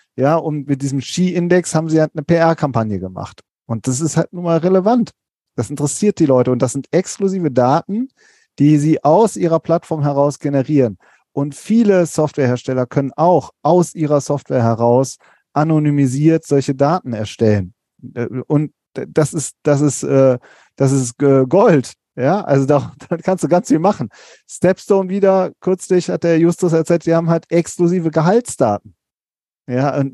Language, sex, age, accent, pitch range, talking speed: German, male, 40-59, German, 135-170 Hz, 155 wpm